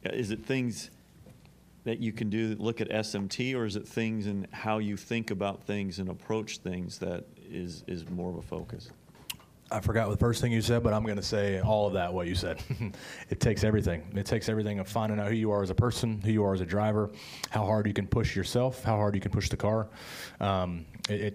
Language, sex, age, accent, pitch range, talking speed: English, male, 30-49, American, 95-110 Hz, 240 wpm